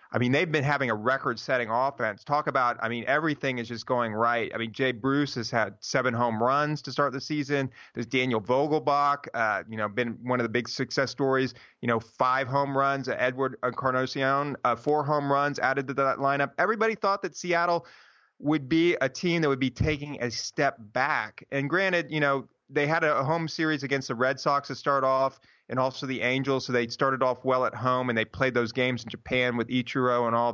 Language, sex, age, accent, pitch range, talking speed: English, male, 30-49, American, 120-145 Hz, 220 wpm